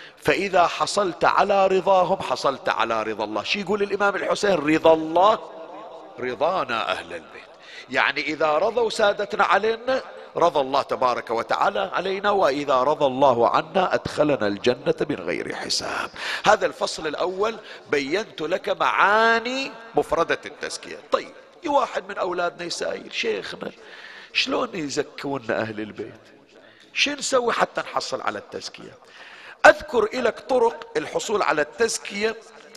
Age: 50-69